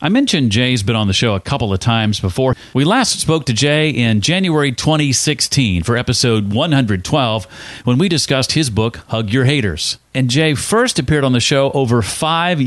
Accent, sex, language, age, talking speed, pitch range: American, male, English, 40-59, 190 wpm, 110-150 Hz